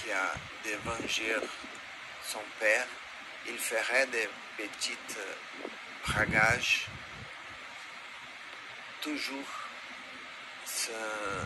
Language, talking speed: French, 60 wpm